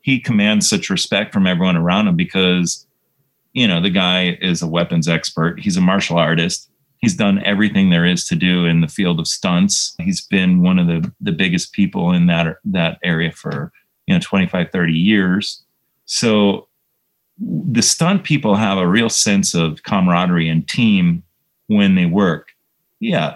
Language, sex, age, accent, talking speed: English, male, 30-49, American, 170 wpm